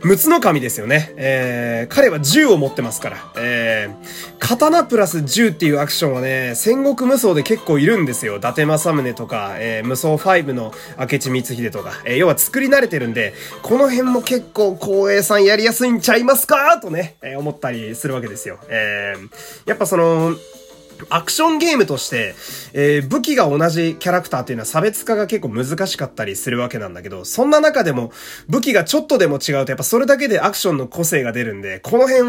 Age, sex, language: 20-39, male, Japanese